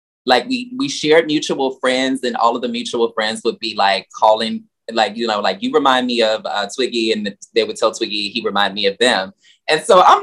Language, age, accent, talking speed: English, 20-39, American, 230 wpm